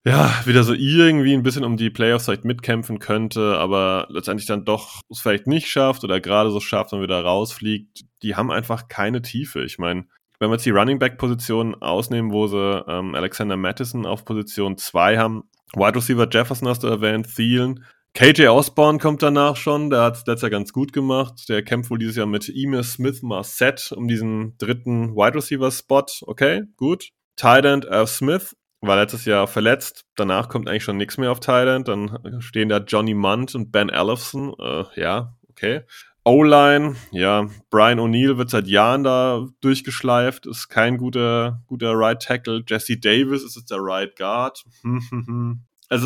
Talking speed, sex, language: 170 wpm, male, German